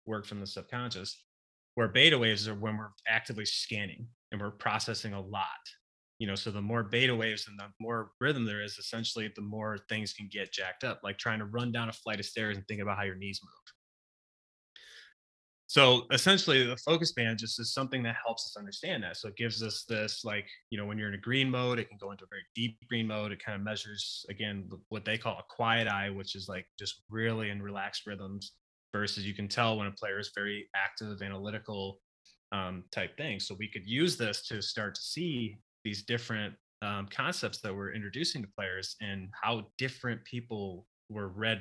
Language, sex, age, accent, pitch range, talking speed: English, male, 20-39, American, 100-115 Hz, 210 wpm